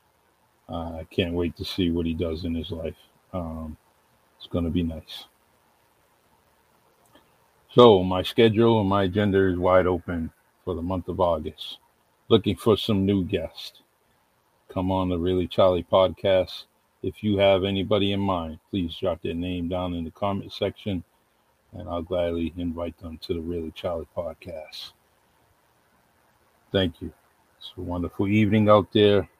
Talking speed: 155 wpm